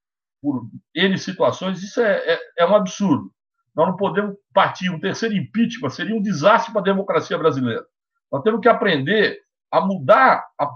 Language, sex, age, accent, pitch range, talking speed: Portuguese, male, 60-79, Brazilian, 170-240 Hz, 165 wpm